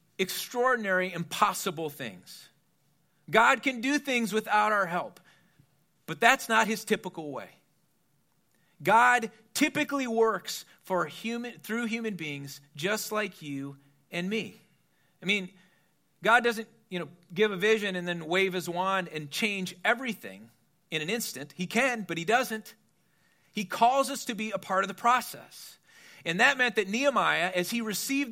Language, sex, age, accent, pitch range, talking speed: English, male, 40-59, American, 165-225 Hz, 155 wpm